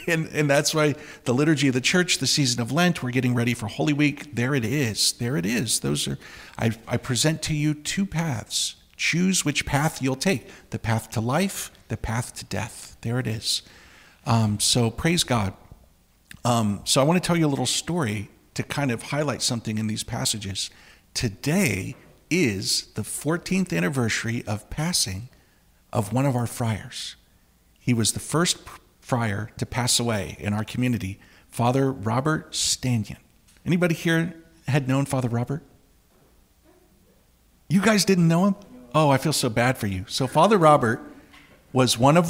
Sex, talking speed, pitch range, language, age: male, 175 wpm, 110-150 Hz, English, 50-69